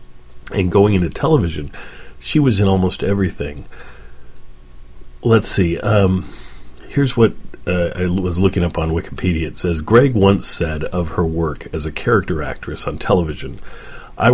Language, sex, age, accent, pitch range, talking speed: English, male, 40-59, American, 80-95 Hz, 150 wpm